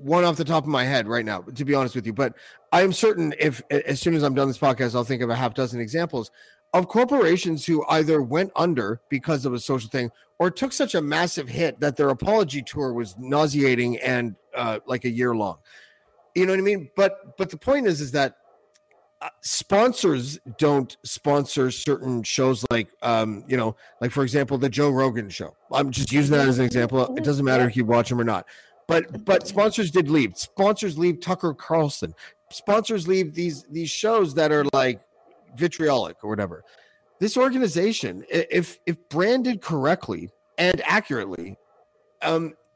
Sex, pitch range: male, 130-180 Hz